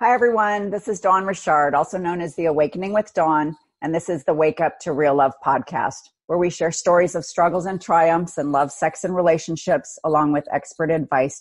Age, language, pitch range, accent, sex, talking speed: 40-59, English, 145-180 Hz, American, female, 210 wpm